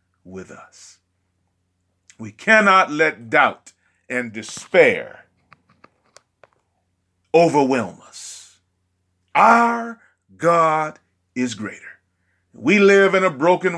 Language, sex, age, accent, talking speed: English, male, 40-59, American, 85 wpm